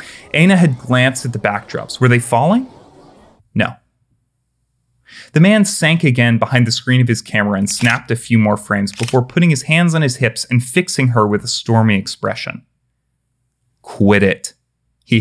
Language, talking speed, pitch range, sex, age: English, 170 wpm, 110-140 Hz, male, 30-49